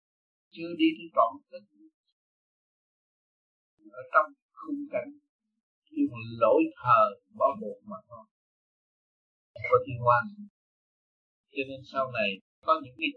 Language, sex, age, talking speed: Vietnamese, male, 60-79, 95 wpm